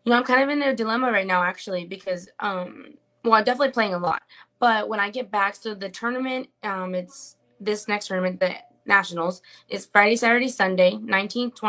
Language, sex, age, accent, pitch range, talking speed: English, female, 20-39, American, 195-245 Hz, 205 wpm